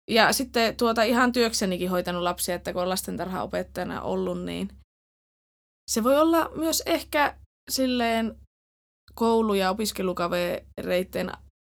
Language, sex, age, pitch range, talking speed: Finnish, female, 20-39, 175-210 Hz, 105 wpm